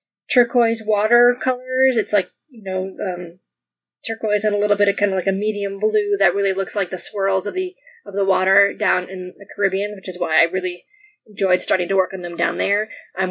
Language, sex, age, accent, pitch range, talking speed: English, female, 20-39, American, 200-270 Hz, 220 wpm